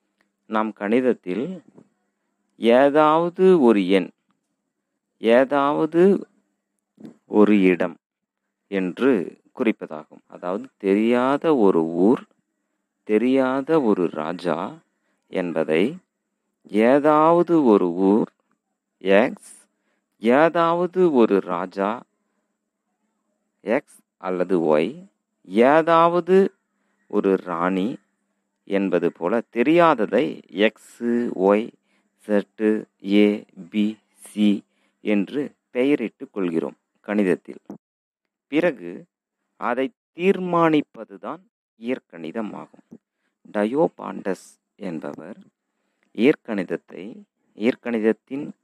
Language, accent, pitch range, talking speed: Tamil, native, 95-145 Hz, 65 wpm